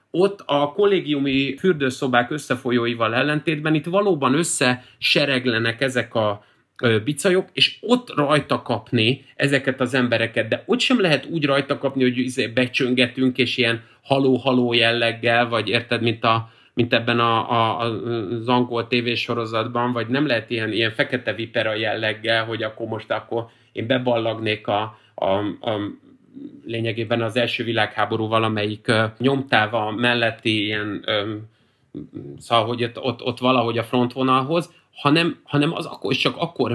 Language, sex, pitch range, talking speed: Hungarian, male, 115-145 Hz, 135 wpm